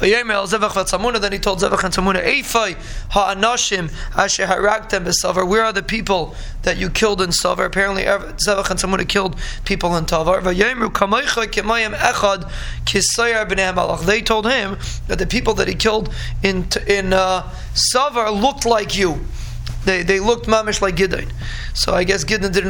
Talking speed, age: 130 wpm, 20-39